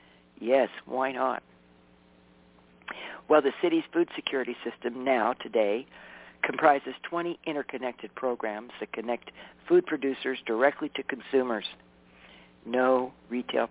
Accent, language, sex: American, English, male